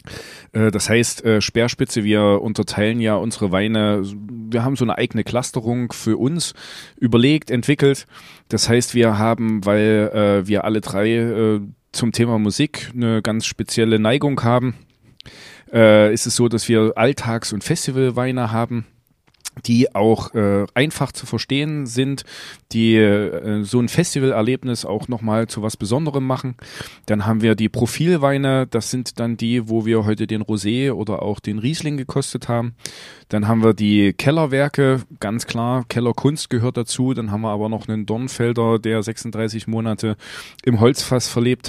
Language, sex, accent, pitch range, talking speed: German, male, German, 110-130 Hz, 150 wpm